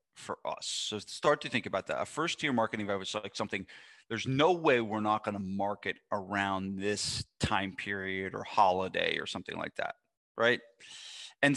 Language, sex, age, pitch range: English, male, 30-49, 105-150 Hz